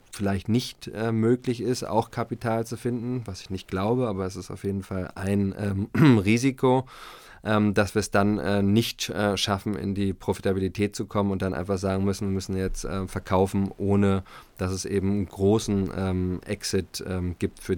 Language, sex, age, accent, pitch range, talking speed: German, male, 20-39, German, 95-110 Hz, 190 wpm